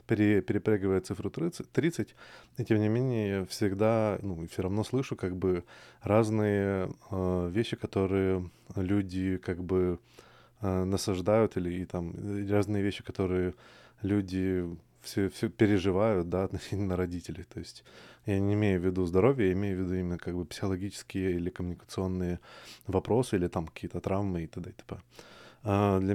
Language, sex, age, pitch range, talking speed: Russian, male, 20-39, 95-110 Hz, 145 wpm